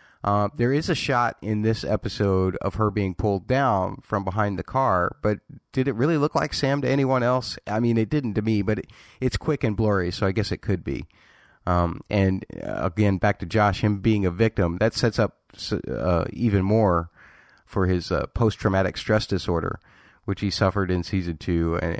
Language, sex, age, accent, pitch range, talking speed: English, male, 30-49, American, 90-115 Hz, 205 wpm